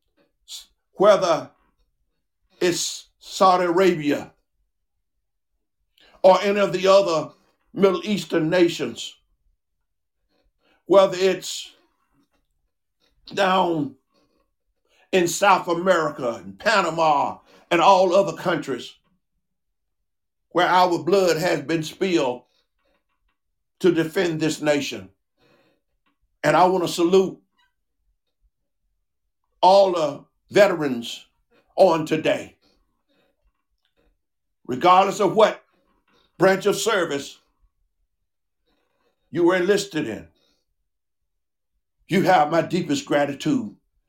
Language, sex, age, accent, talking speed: English, male, 50-69, American, 80 wpm